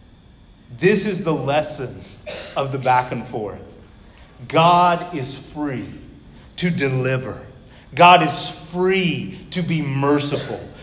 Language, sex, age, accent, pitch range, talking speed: English, male, 30-49, American, 150-215 Hz, 110 wpm